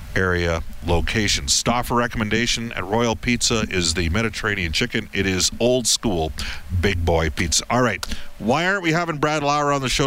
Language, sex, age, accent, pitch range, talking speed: English, male, 50-69, American, 85-110 Hz, 175 wpm